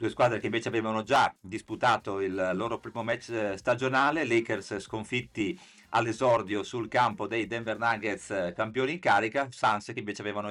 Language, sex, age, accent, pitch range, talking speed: Italian, male, 50-69, native, 105-130 Hz, 155 wpm